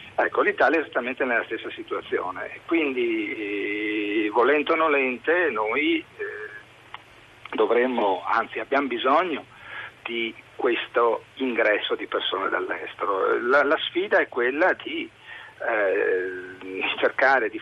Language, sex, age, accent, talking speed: Italian, male, 50-69, native, 110 wpm